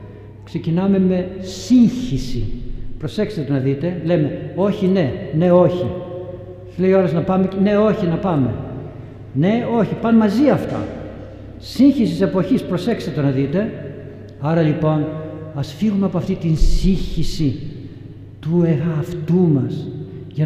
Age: 60-79